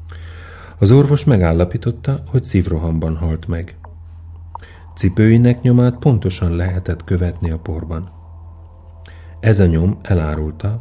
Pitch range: 85-110 Hz